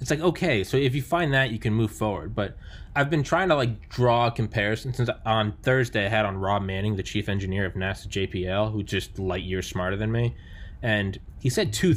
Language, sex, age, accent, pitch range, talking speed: English, male, 20-39, American, 95-120 Hz, 225 wpm